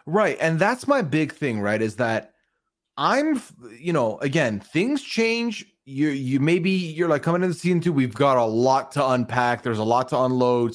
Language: English